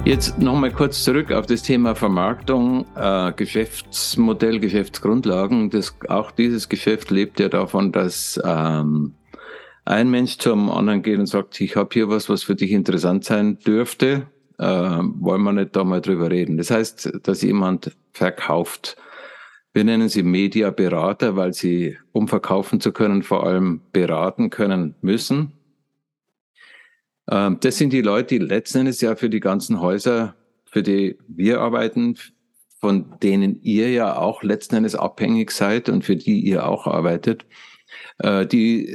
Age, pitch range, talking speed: 60-79, 95-120 Hz, 150 wpm